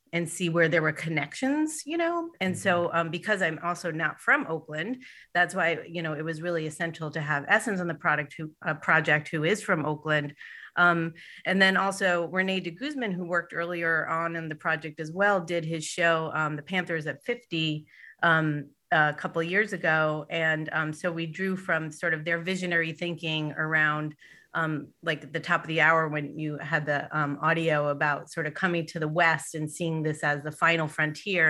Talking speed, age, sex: 205 wpm, 30-49, female